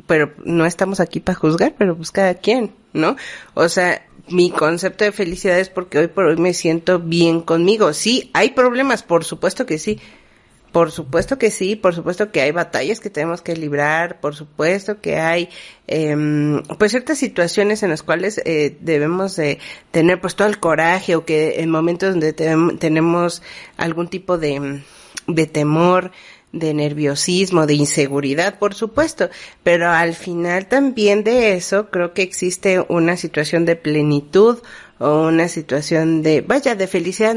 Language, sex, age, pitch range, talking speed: Spanish, female, 40-59, 155-195 Hz, 165 wpm